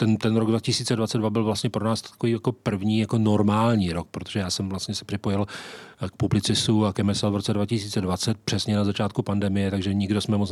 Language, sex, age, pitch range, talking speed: Czech, male, 40-59, 95-115 Hz, 205 wpm